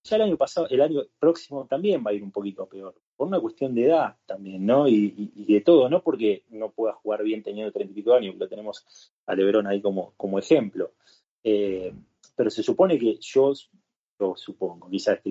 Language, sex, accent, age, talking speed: Spanish, male, Argentinian, 30-49, 210 wpm